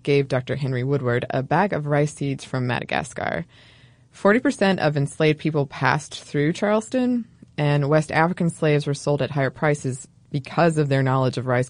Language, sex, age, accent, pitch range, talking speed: English, female, 20-39, American, 130-160 Hz, 175 wpm